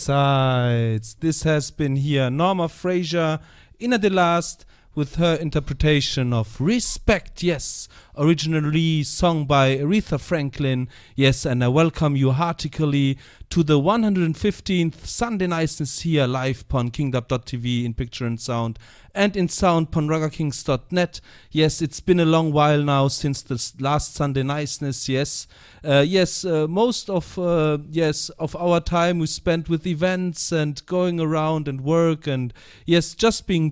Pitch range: 130-165 Hz